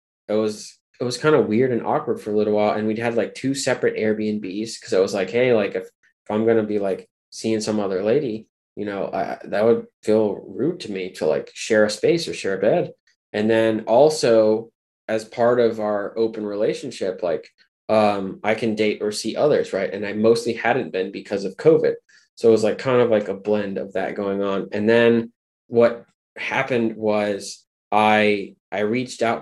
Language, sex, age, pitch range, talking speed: English, male, 20-39, 105-125 Hz, 210 wpm